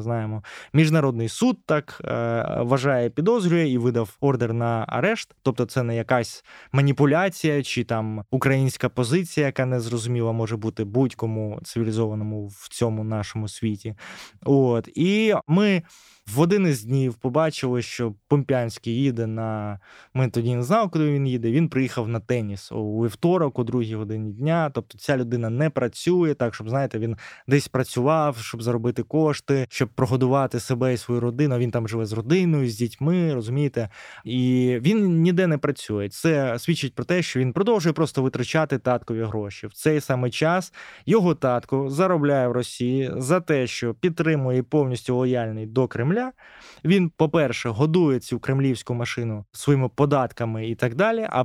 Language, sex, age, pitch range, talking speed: English, male, 20-39, 115-155 Hz, 155 wpm